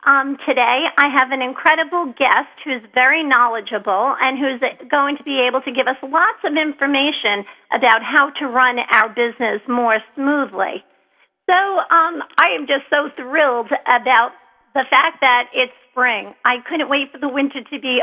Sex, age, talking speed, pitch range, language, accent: female, 50-69, 170 wpm, 250-300 Hz, English, American